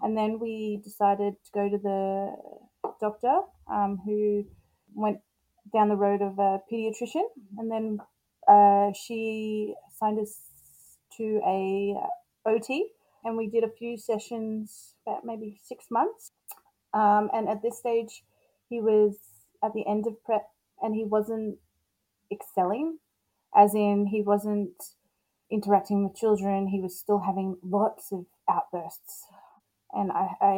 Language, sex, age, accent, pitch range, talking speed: English, female, 30-49, Australian, 195-220 Hz, 135 wpm